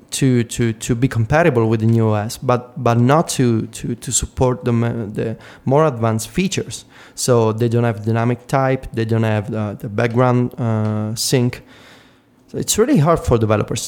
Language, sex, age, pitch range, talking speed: English, male, 20-39, 115-130 Hz, 175 wpm